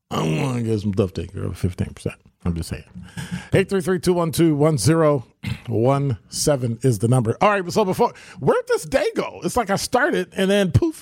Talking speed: 170 wpm